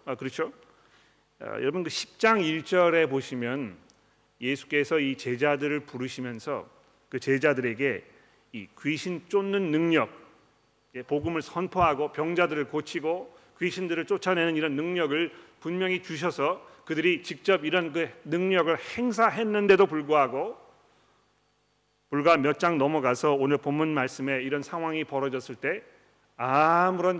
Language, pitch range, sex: Korean, 135-175 Hz, male